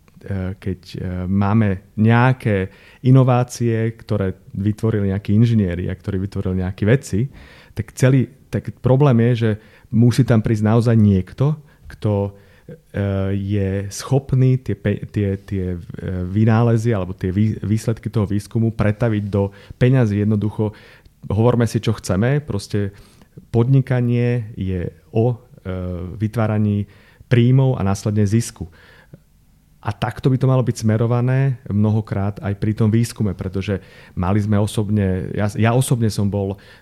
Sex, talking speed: male, 120 wpm